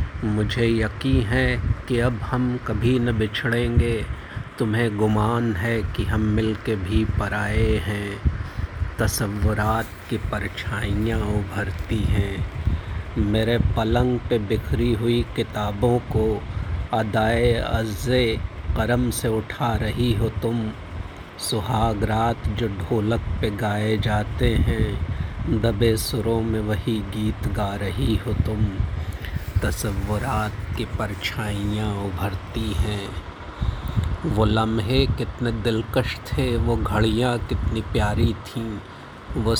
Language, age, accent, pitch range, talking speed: Hindi, 50-69, native, 100-115 Hz, 105 wpm